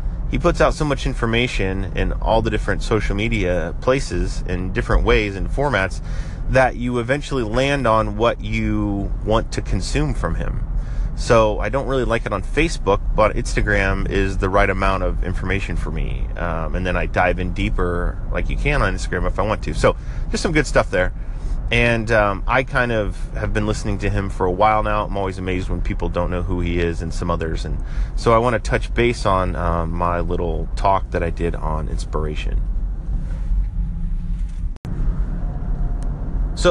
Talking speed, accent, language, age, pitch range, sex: 190 wpm, American, English, 30-49, 85-115 Hz, male